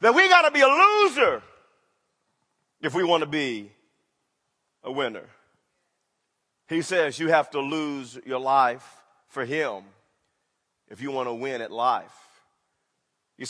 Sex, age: male, 40-59